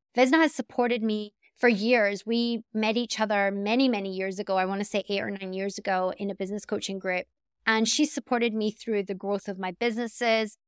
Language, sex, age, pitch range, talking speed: English, female, 20-39, 195-230 Hz, 215 wpm